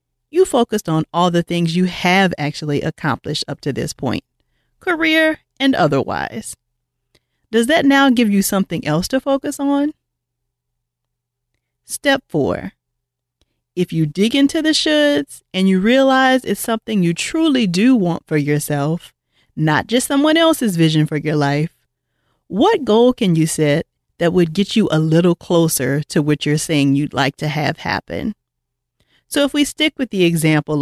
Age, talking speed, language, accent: 40-59, 160 wpm, English, American